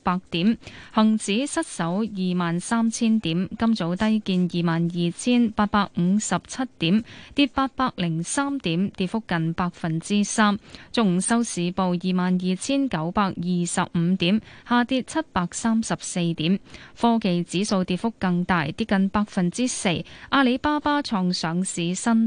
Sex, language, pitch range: female, Chinese, 175-230 Hz